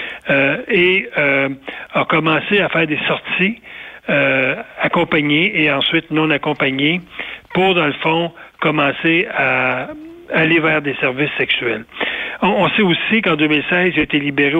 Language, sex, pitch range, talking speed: French, male, 145-175 Hz, 150 wpm